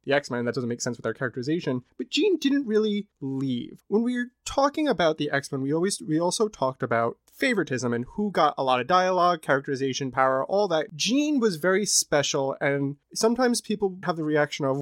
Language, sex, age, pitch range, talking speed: English, male, 20-39, 135-185 Hz, 210 wpm